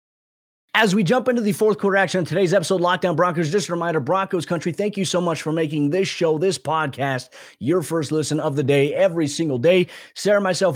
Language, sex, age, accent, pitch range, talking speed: English, male, 30-49, American, 130-170 Hz, 215 wpm